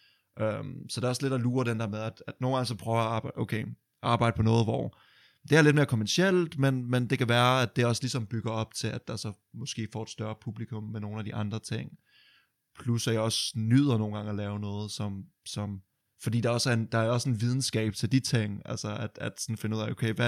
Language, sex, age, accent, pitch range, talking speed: Danish, male, 20-39, native, 110-125 Hz, 260 wpm